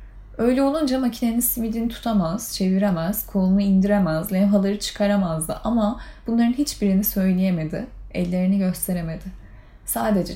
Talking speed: 100 wpm